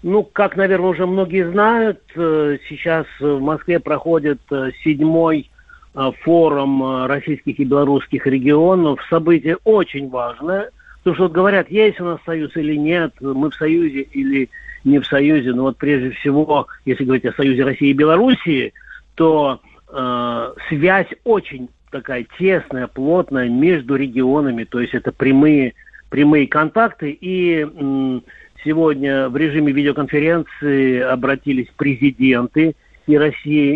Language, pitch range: Russian, 135-165 Hz